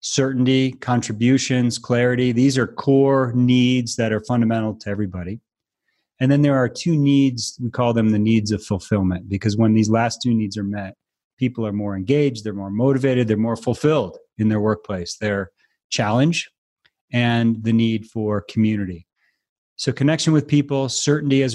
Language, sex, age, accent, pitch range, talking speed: English, male, 30-49, American, 110-135 Hz, 165 wpm